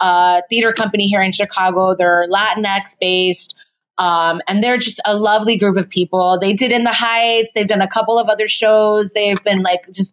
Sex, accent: female, American